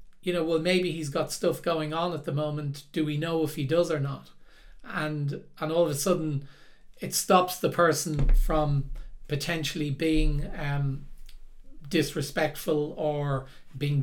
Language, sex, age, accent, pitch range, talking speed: English, male, 40-59, Irish, 145-170 Hz, 160 wpm